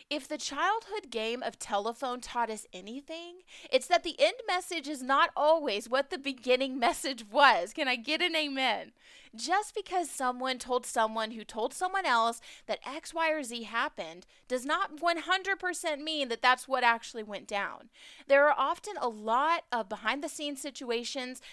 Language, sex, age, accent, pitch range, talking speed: English, female, 30-49, American, 225-295 Hz, 175 wpm